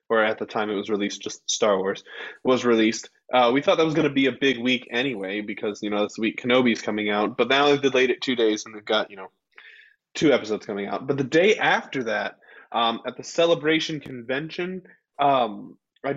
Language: English